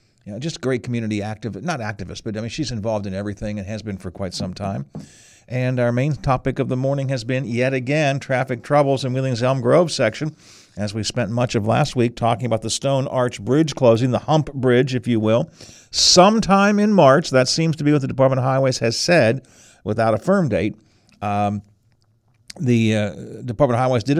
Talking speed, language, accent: 215 wpm, English, American